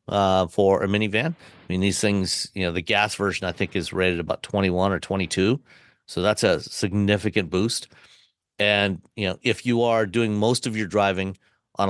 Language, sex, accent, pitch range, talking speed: English, male, American, 95-115 Hz, 190 wpm